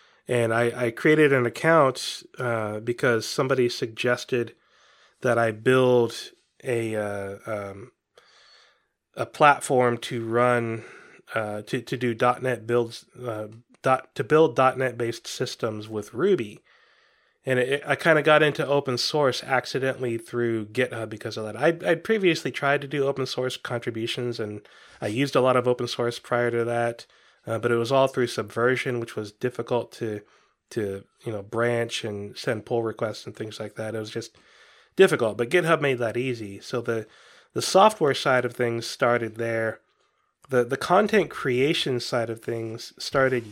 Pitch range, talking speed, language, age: 115-130 Hz, 165 wpm, English, 20-39